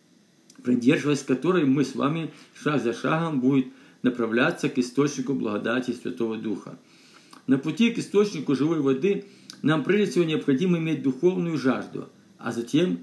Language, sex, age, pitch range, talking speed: Russian, male, 50-69, 130-180 Hz, 140 wpm